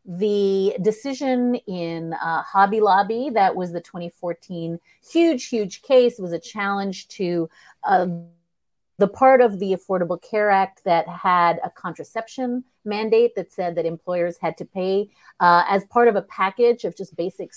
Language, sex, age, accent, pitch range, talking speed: English, female, 40-59, American, 185-250 Hz, 155 wpm